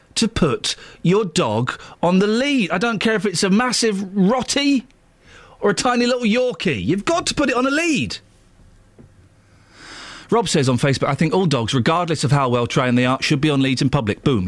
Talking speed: 205 wpm